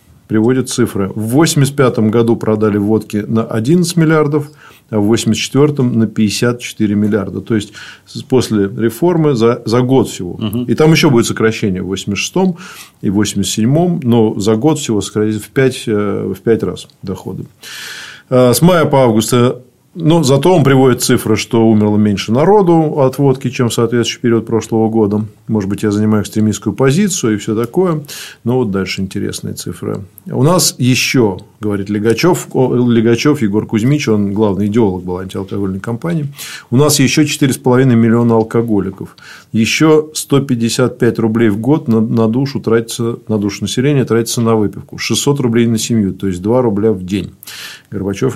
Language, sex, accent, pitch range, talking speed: Russian, male, native, 110-130 Hz, 155 wpm